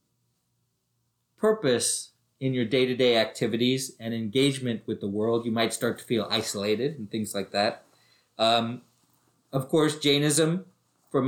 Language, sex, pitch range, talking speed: English, male, 120-140 Hz, 135 wpm